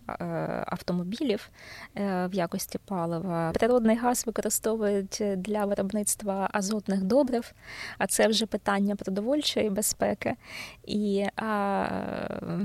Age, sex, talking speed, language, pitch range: 20-39, female, 90 wpm, Ukrainian, 180-210 Hz